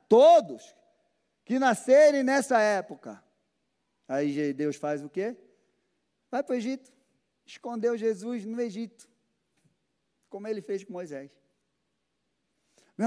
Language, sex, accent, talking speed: Portuguese, male, Brazilian, 110 wpm